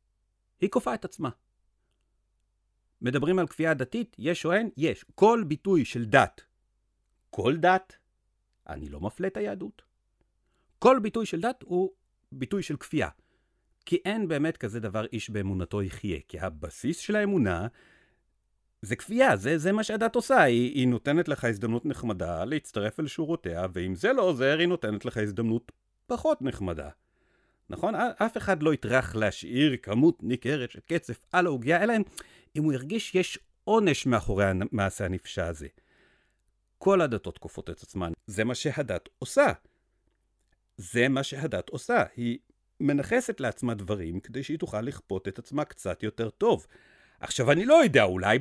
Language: Hebrew